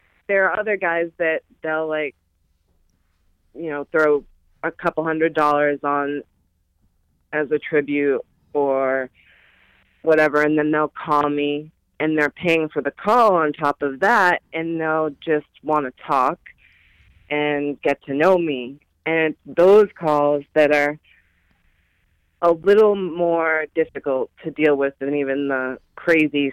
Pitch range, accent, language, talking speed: 135-160 Hz, American, English, 140 wpm